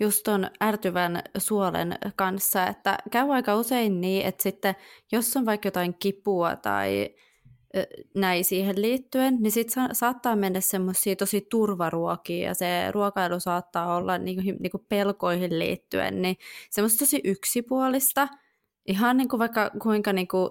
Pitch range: 170-205 Hz